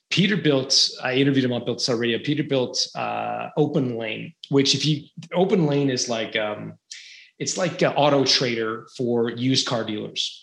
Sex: male